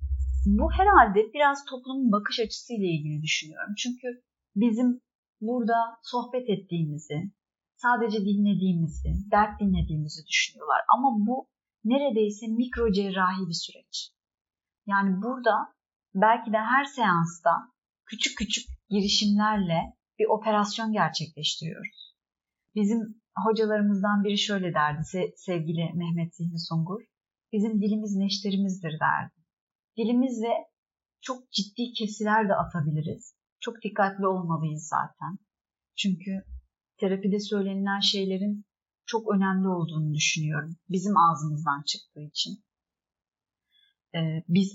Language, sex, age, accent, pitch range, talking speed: Turkish, female, 30-49, native, 180-225 Hz, 100 wpm